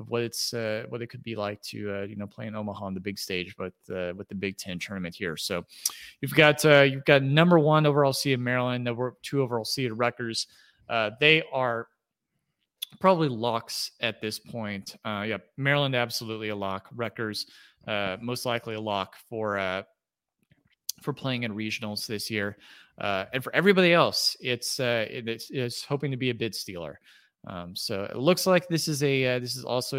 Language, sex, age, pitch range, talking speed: English, male, 30-49, 105-135 Hz, 205 wpm